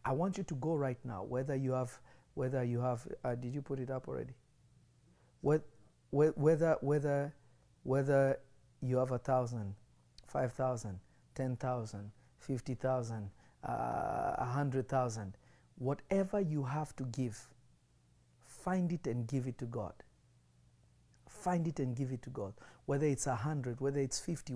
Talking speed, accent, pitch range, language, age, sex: 155 wpm, South African, 125-155 Hz, English, 50-69, male